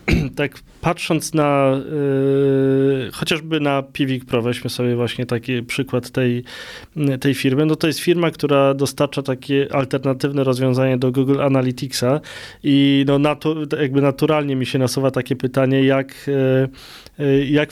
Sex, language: male, Polish